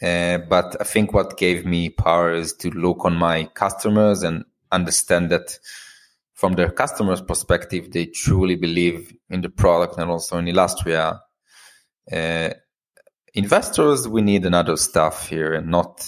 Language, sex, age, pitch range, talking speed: English, male, 20-39, 85-100 Hz, 150 wpm